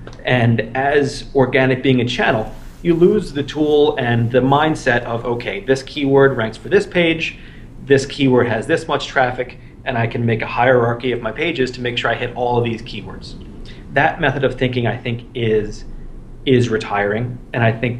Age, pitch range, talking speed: 30-49, 115-135 Hz, 190 wpm